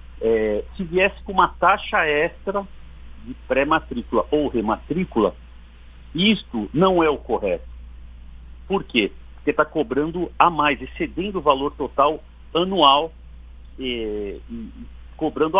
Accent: Brazilian